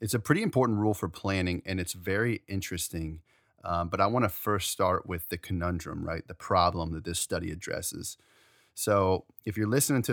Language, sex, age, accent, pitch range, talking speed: English, male, 30-49, American, 90-110 Hz, 195 wpm